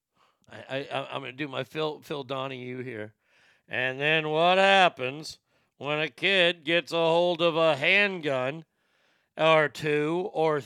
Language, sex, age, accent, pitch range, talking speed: English, male, 50-69, American, 140-195 Hz, 150 wpm